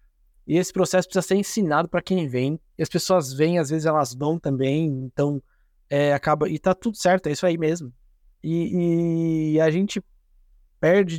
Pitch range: 145-180 Hz